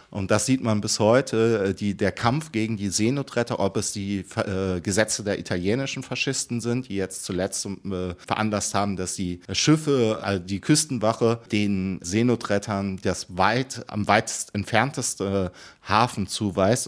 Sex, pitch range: male, 95-115 Hz